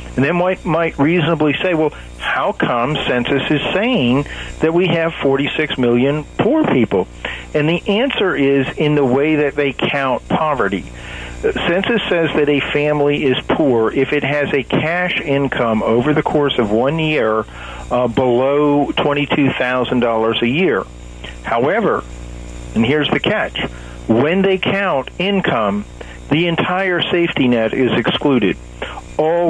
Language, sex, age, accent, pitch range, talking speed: English, male, 50-69, American, 120-155 Hz, 140 wpm